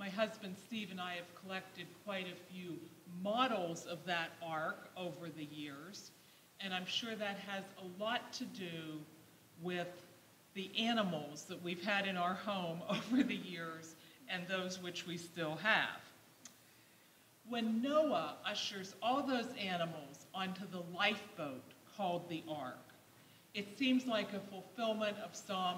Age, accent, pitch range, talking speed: 50-69, American, 175-220 Hz, 145 wpm